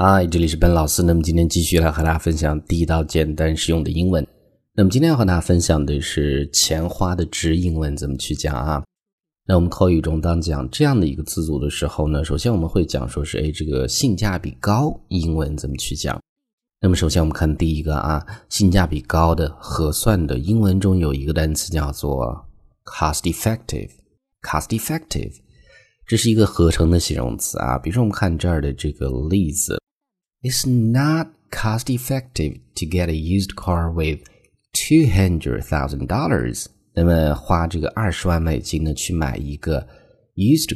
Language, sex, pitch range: Chinese, male, 75-105 Hz